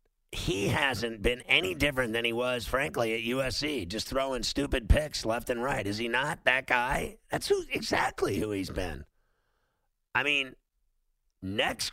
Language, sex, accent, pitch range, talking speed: English, male, American, 110-130 Hz, 160 wpm